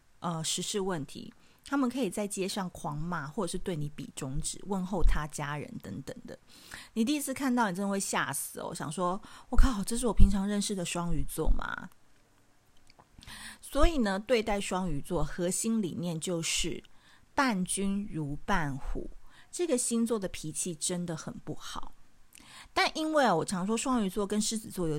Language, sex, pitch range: Chinese, female, 175-245 Hz